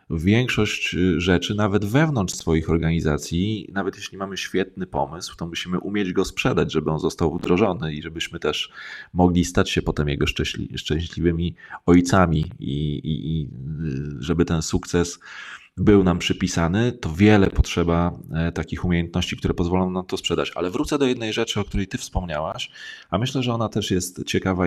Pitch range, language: 85-105 Hz, Polish